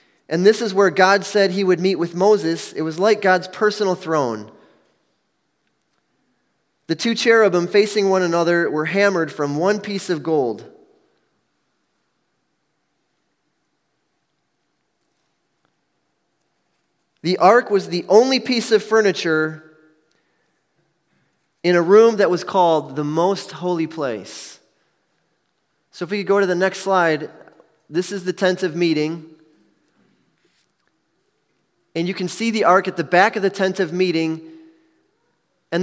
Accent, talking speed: American, 130 wpm